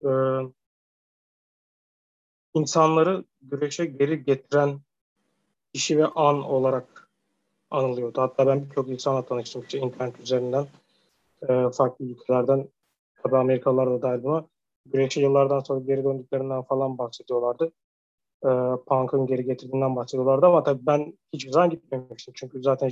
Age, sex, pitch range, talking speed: 30-49, male, 130-145 Hz, 115 wpm